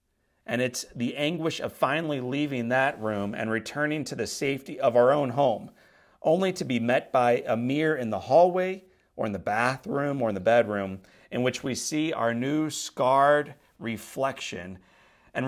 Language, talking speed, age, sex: English, 175 wpm, 40-59, male